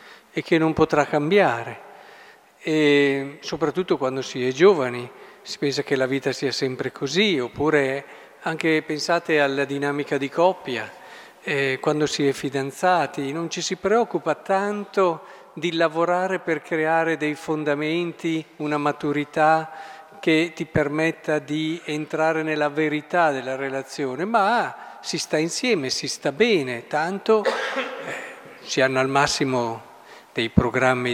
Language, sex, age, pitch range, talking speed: Italian, male, 50-69, 135-170 Hz, 125 wpm